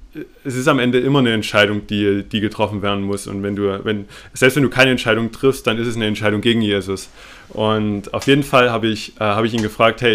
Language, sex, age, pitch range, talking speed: German, male, 20-39, 105-125 Hz, 230 wpm